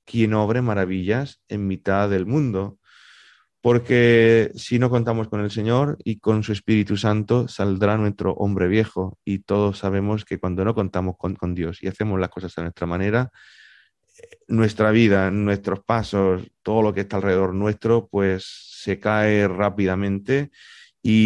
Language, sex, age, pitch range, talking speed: Spanish, male, 30-49, 95-120 Hz, 155 wpm